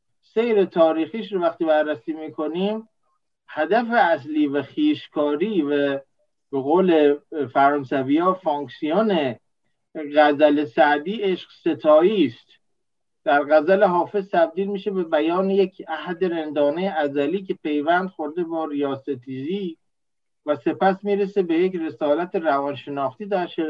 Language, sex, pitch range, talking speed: Persian, male, 145-190 Hz, 115 wpm